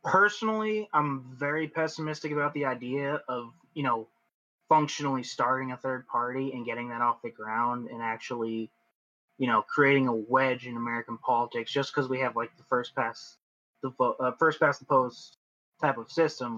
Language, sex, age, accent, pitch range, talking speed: English, male, 20-39, American, 120-145 Hz, 175 wpm